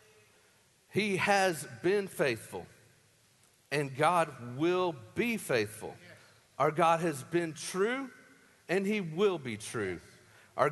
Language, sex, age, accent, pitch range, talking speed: English, male, 40-59, American, 145-210 Hz, 110 wpm